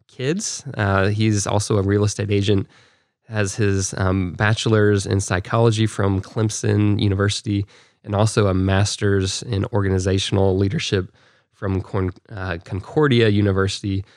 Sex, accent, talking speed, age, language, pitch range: male, American, 125 wpm, 20-39, English, 100-115 Hz